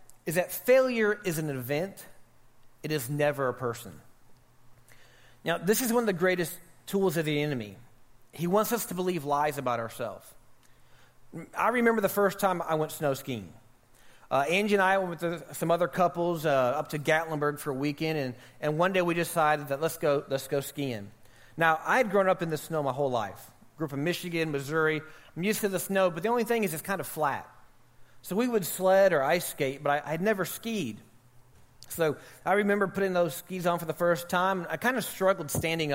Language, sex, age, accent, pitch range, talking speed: English, male, 30-49, American, 130-185 Hz, 210 wpm